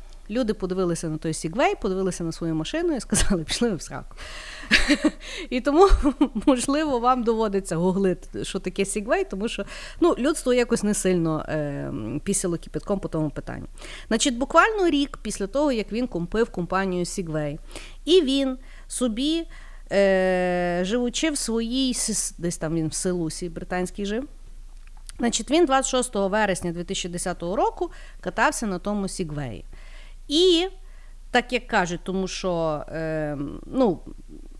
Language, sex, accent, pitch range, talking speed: Ukrainian, female, native, 180-275 Hz, 135 wpm